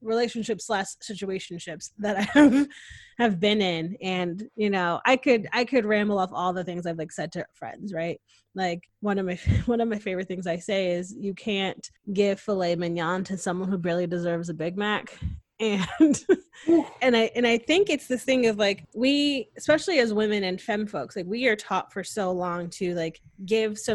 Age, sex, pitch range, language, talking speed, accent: 20-39, female, 180-220 Hz, English, 205 wpm, American